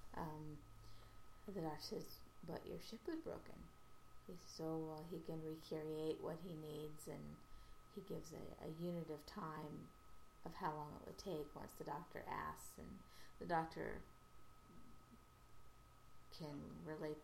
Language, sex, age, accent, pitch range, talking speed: English, female, 30-49, American, 105-170 Hz, 135 wpm